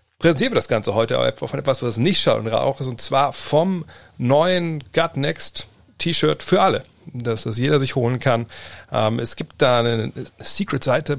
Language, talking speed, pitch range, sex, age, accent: German, 175 wpm, 100-125 Hz, male, 40-59, German